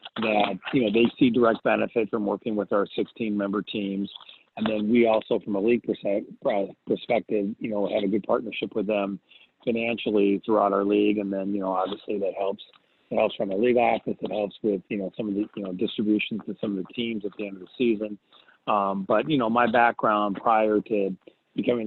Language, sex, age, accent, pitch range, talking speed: English, male, 40-59, American, 100-110 Hz, 215 wpm